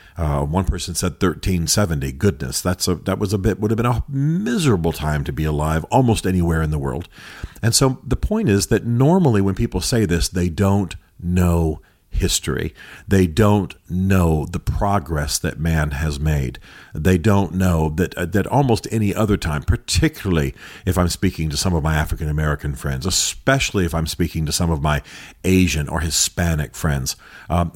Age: 50-69